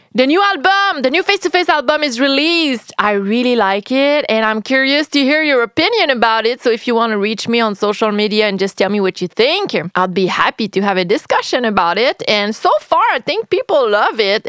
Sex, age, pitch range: female, 30-49, 210-310 Hz